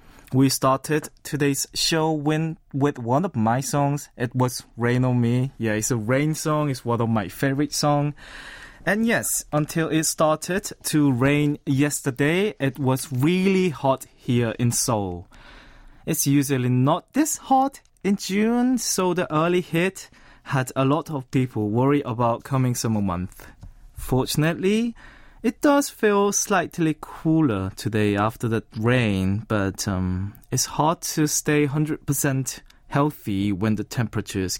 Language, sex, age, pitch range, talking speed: English, male, 20-39, 120-155 Hz, 140 wpm